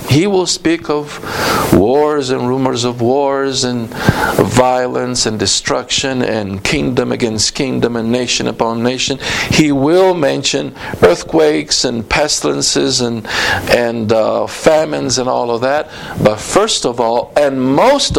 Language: English